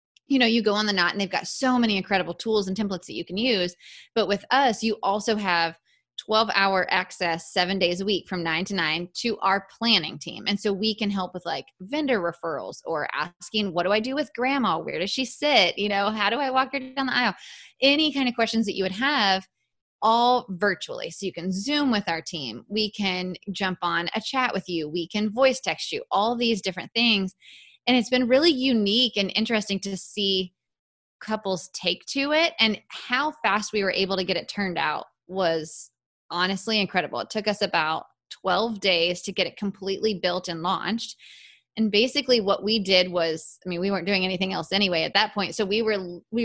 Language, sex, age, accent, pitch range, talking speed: English, female, 20-39, American, 185-225 Hz, 215 wpm